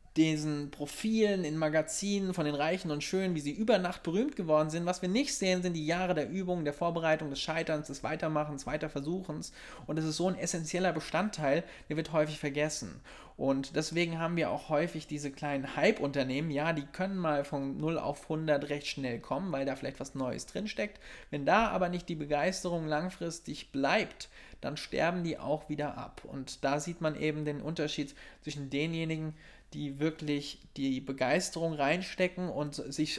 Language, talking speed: German, 180 wpm